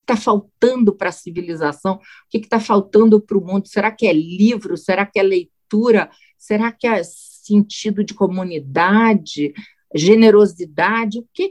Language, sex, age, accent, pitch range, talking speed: Portuguese, female, 50-69, Brazilian, 175-225 Hz, 160 wpm